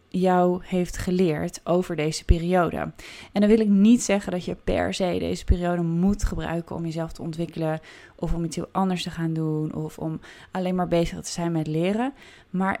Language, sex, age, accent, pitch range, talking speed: Dutch, female, 20-39, Dutch, 170-210 Hz, 195 wpm